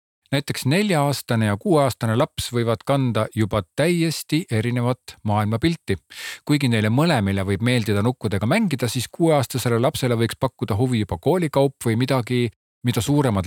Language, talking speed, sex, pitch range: Czech, 135 wpm, male, 100-135 Hz